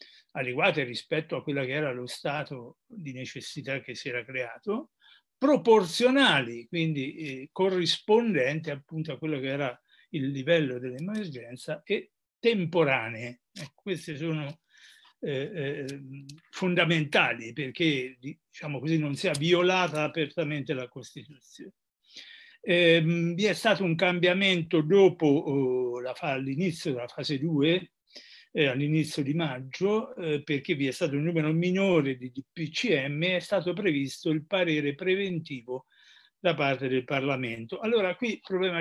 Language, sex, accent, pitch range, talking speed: Italian, male, native, 140-185 Hz, 115 wpm